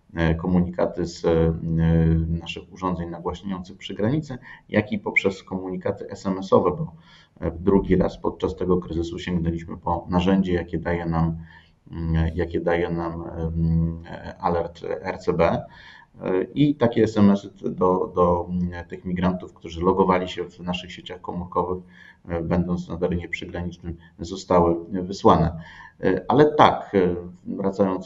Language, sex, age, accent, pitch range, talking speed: Polish, male, 30-49, native, 85-100 Hz, 110 wpm